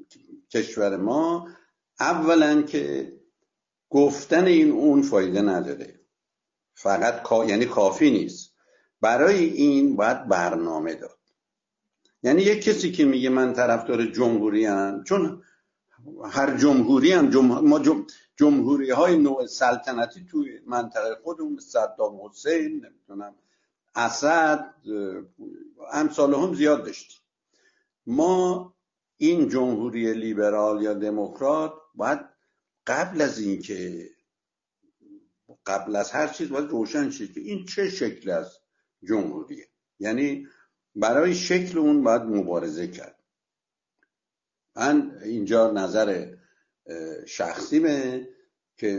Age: 60-79